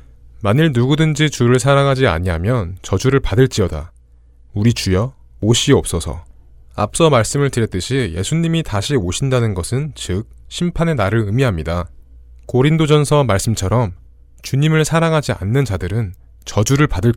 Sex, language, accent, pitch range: male, Korean, native, 90-135 Hz